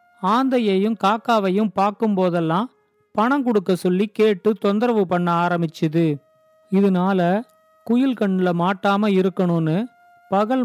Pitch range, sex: 185-235 Hz, male